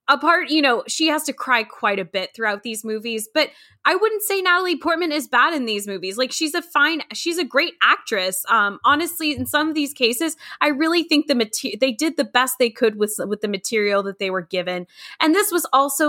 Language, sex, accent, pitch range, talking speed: English, female, American, 195-260 Hz, 230 wpm